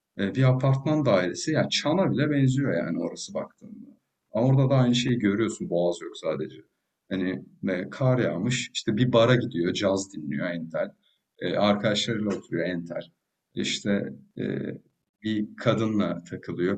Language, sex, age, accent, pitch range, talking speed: Turkish, male, 50-69, native, 100-140 Hz, 130 wpm